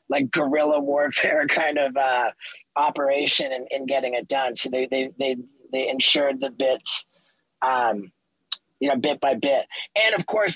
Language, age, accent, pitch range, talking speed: English, 30-49, American, 135-165 Hz, 170 wpm